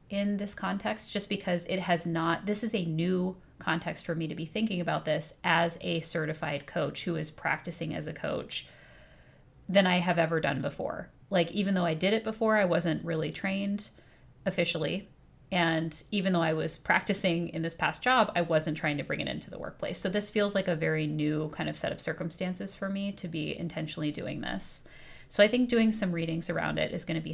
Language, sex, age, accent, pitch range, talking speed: English, female, 30-49, American, 160-195 Hz, 215 wpm